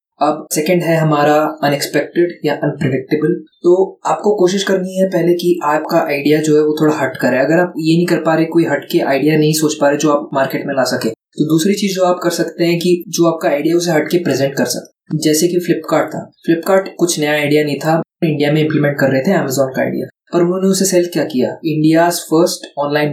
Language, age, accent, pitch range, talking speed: Hindi, 20-39, native, 140-165 Hz, 230 wpm